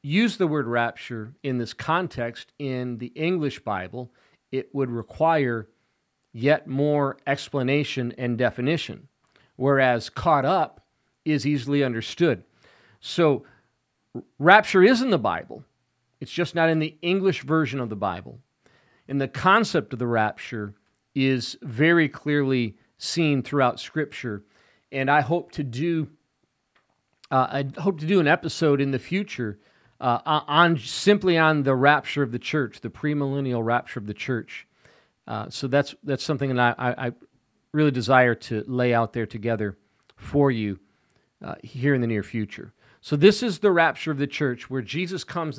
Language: English